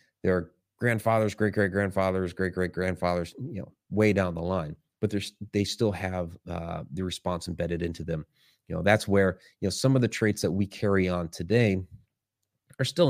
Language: English